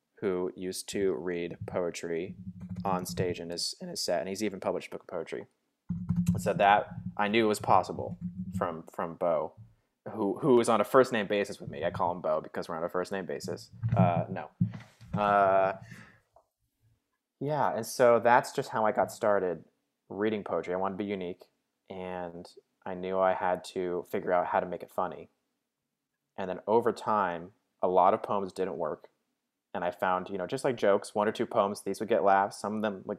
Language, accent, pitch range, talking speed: English, American, 90-110 Hz, 205 wpm